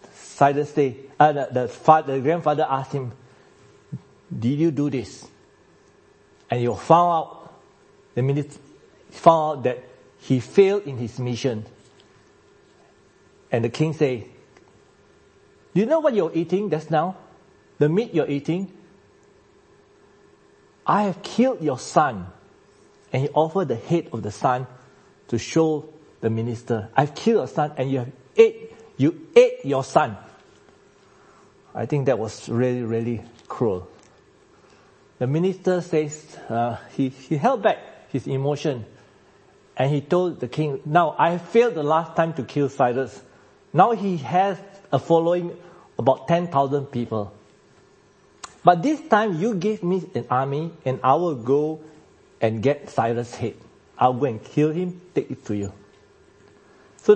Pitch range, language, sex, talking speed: 125-180 Hz, English, male, 145 wpm